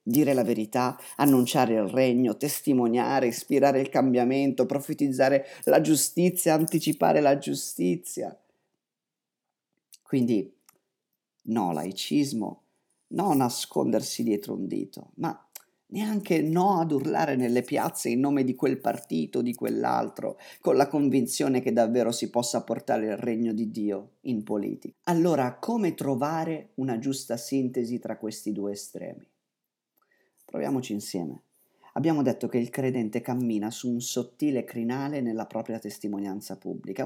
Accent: native